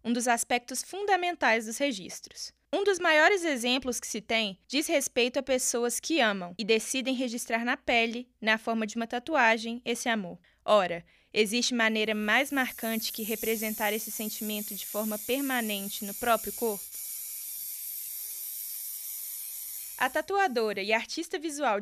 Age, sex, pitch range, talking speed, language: 20-39, female, 220-285 Hz, 140 wpm, Portuguese